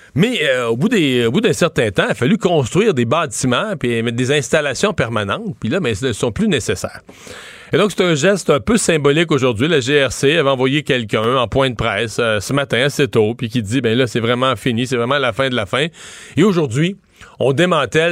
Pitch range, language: 120-145 Hz, French